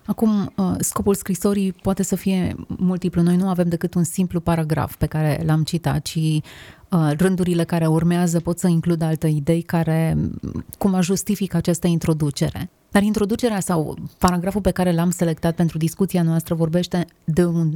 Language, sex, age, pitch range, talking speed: Romanian, female, 30-49, 160-185 Hz, 155 wpm